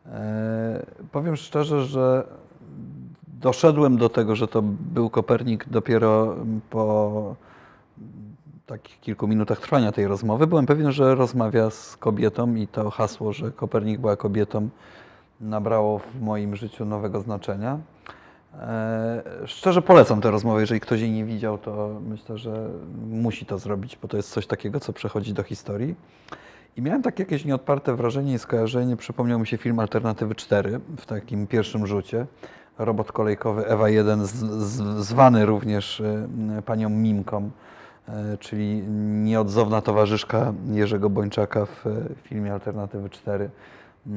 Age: 30-49